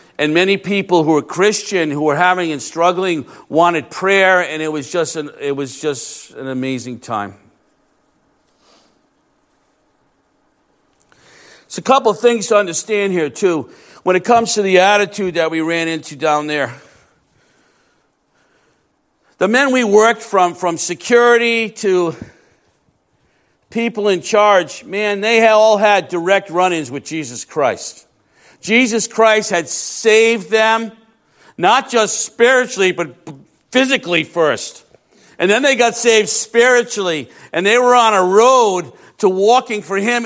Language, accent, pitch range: English, American, 155-225 Hz